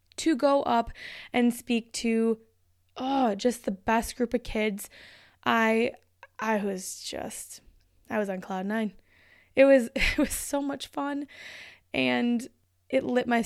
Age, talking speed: 20-39, 145 wpm